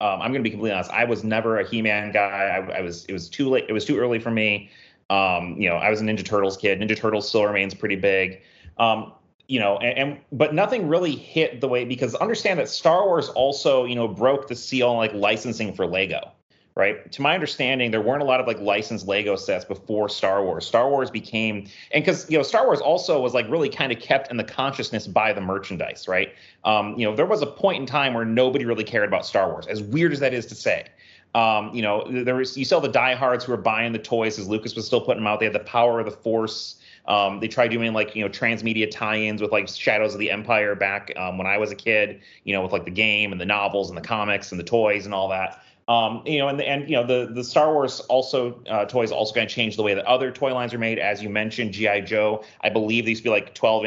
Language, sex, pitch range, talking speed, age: English, male, 100-120 Hz, 265 wpm, 30-49